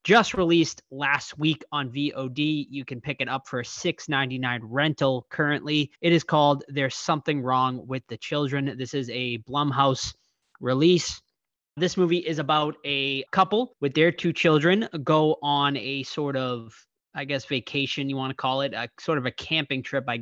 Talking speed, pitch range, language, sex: 180 wpm, 135-165 Hz, English, male